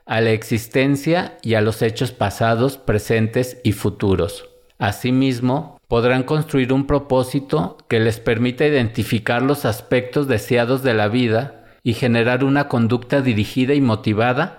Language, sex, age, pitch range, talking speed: Spanish, male, 50-69, 110-135 Hz, 135 wpm